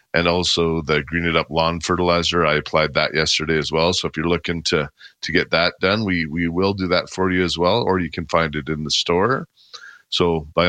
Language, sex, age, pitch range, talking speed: English, male, 40-59, 80-95 Hz, 235 wpm